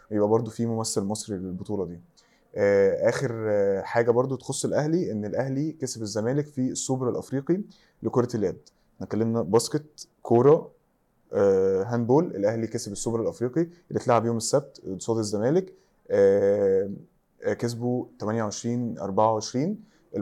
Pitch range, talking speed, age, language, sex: 110-140 Hz, 120 wpm, 20-39, Arabic, male